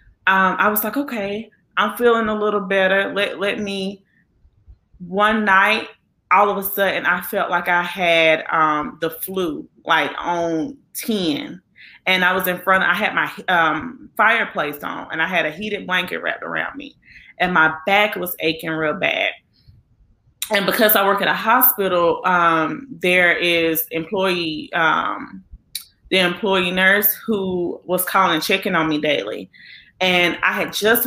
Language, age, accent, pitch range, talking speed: English, 20-39, American, 160-200 Hz, 160 wpm